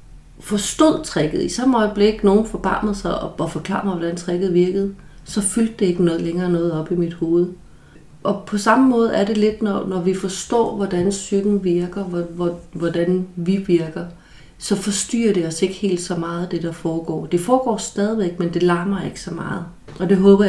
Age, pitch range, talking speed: 30-49, 170-200 Hz, 195 wpm